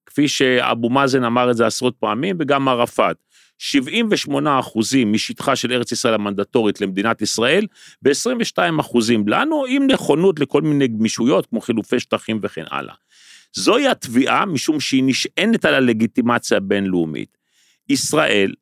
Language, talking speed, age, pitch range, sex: Hebrew, 125 wpm, 40-59, 115-150 Hz, male